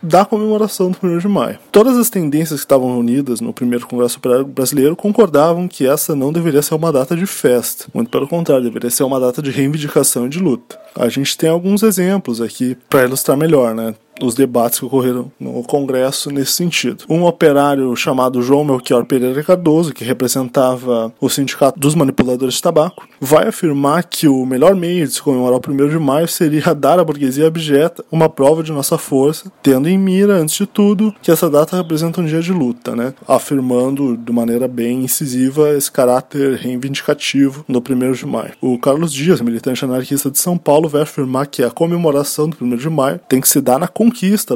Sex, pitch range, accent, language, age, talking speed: male, 130-165 Hz, Brazilian, Portuguese, 20-39, 195 wpm